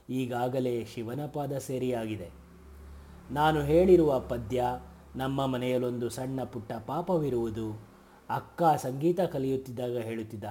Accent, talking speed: native, 90 wpm